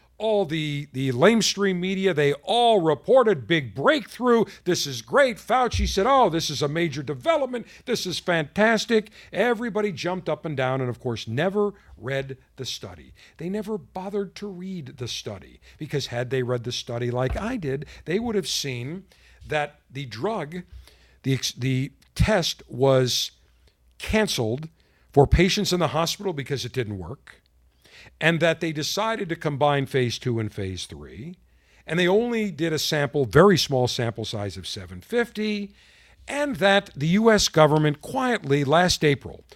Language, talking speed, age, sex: English, 160 wpm, 50-69, male